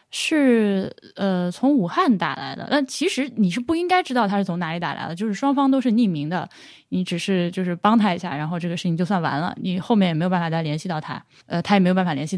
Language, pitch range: Chinese, 175-235 Hz